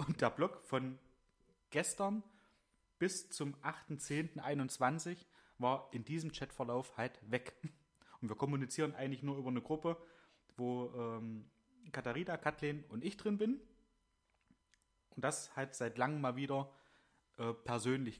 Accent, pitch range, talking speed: German, 125-155 Hz, 130 wpm